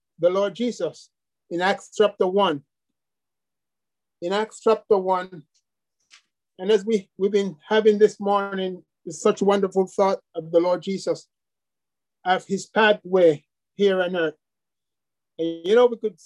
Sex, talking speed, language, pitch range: male, 145 wpm, English, 180-220 Hz